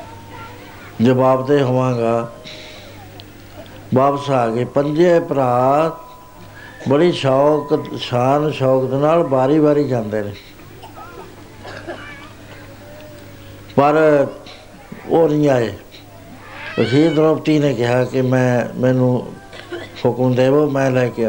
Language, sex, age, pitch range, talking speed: Punjabi, male, 60-79, 105-145 Hz, 85 wpm